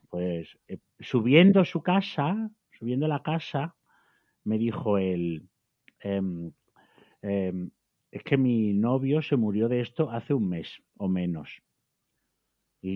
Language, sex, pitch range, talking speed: Spanish, male, 105-150 Hz, 125 wpm